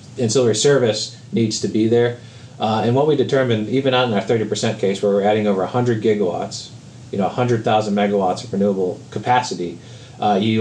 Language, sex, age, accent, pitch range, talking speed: English, male, 30-49, American, 100-120 Hz, 200 wpm